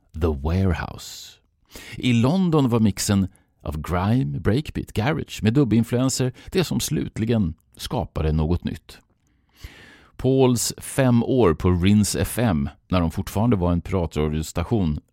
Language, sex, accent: English, male, Swedish